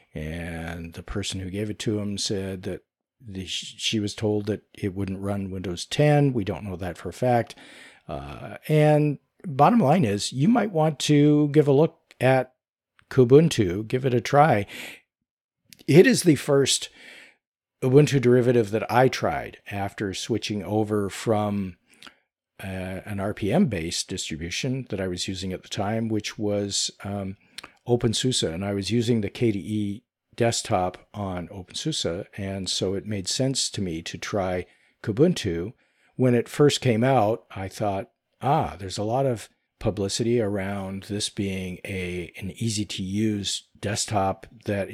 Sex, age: male, 50-69